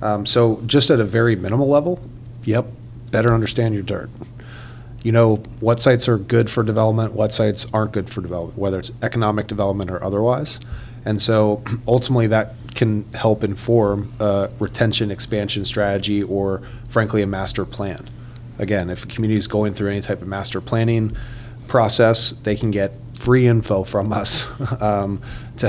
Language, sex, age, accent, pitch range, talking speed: English, male, 30-49, American, 100-120 Hz, 165 wpm